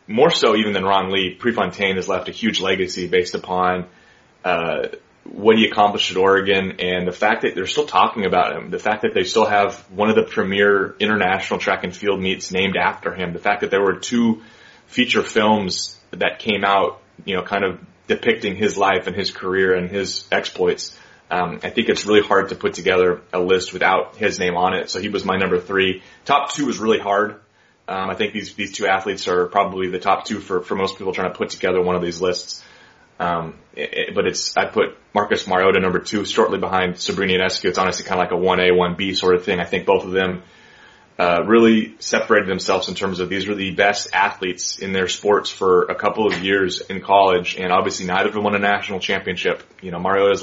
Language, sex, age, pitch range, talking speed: English, male, 30-49, 90-100 Hz, 225 wpm